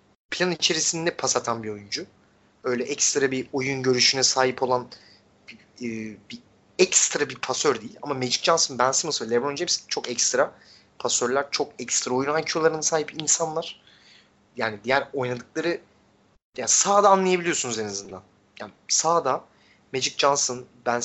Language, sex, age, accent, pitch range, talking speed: Turkish, male, 30-49, native, 120-160 Hz, 140 wpm